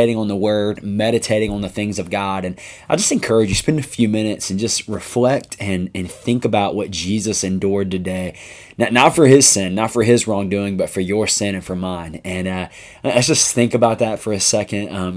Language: English